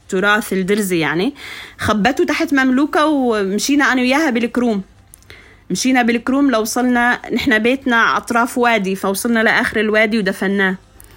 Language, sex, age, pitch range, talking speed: Arabic, female, 30-49, 190-240 Hz, 120 wpm